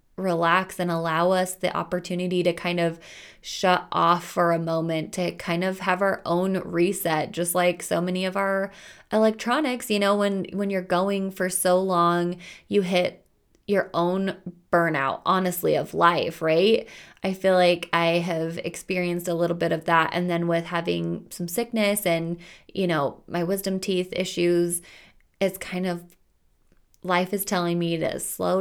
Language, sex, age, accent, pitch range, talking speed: English, female, 20-39, American, 170-190 Hz, 165 wpm